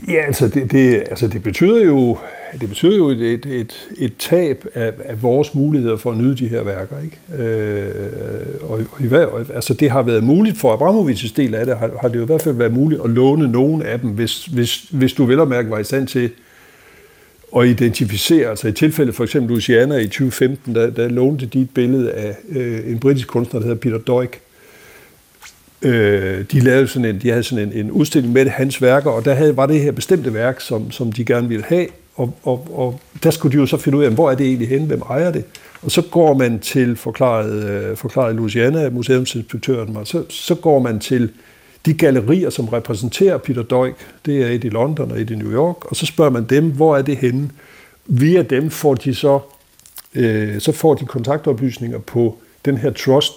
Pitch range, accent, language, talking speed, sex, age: 115-145 Hz, native, Danish, 210 wpm, male, 60-79